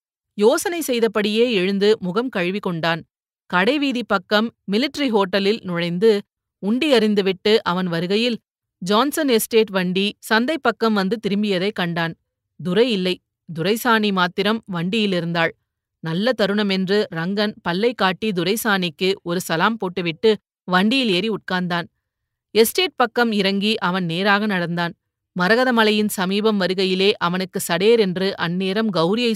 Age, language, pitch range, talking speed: 30-49, Tamil, 180-220 Hz, 105 wpm